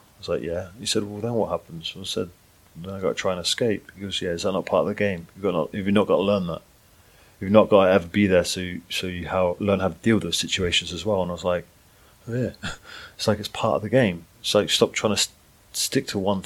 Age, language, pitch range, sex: 30-49, English, 95-110 Hz, male